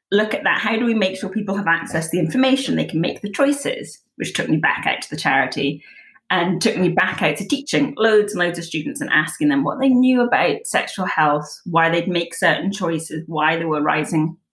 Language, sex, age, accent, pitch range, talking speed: English, female, 20-39, British, 165-255 Hz, 235 wpm